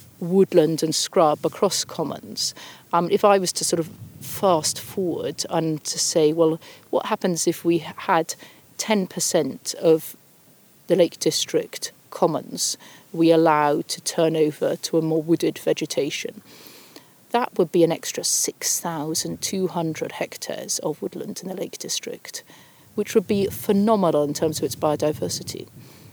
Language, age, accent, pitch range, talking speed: English, 40-59, British, 165-195 Hz, 140 wpm